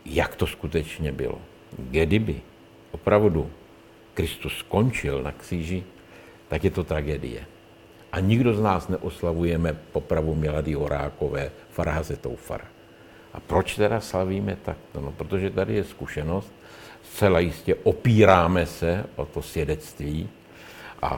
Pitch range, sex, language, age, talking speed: 80-95 Hz, male, Czech, 60-79, 115 wpm